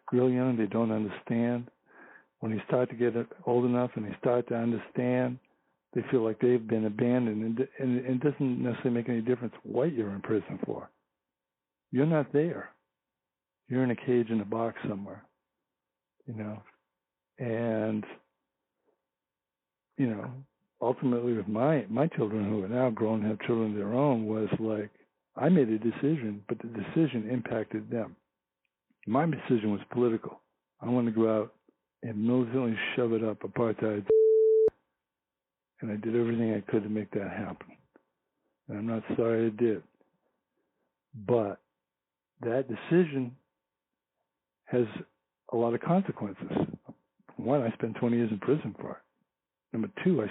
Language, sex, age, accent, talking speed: English, male, 60-79, American, 155 wpm